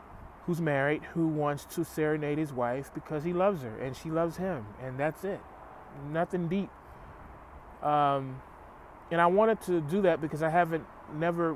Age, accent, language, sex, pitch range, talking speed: 30-49, American, English, male, 135-170 Hz, 160 wpm